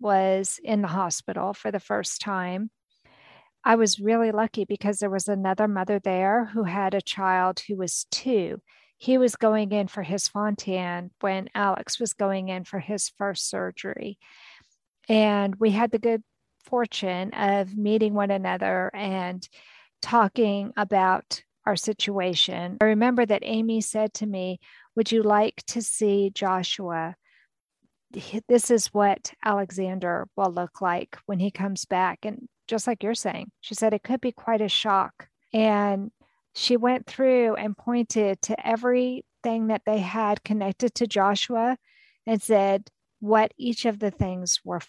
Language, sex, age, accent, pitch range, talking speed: English, female, 50-69, American, 195-235 Hz, 155 wpm